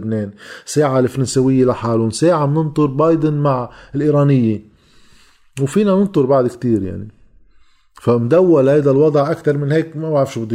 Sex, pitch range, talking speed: male, 110-145 Hz, 130 wpm